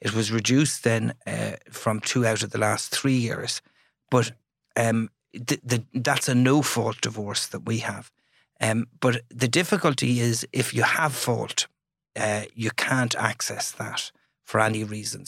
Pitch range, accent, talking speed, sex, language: 115-130 Hz, Irish, 160 wpm, male, English